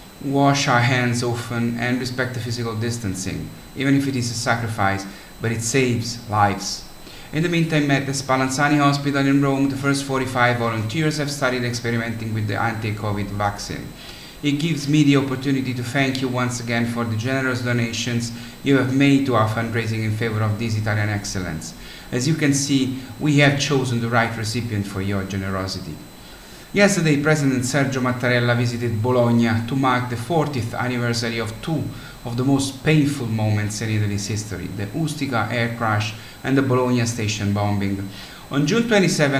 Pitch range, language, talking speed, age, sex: 115-140 Hz, English, 170 wpm, 30-49, male